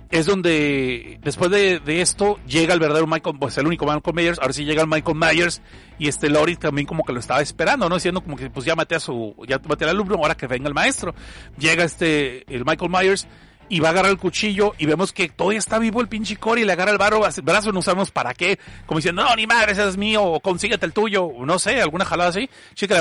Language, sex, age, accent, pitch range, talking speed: Spanish, male, 40-59, Mexican, 155-215 Hz, 260 wpm